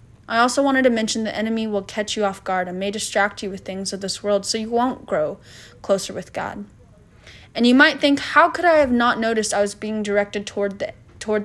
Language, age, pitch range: English, 20-39, 195-235 Hz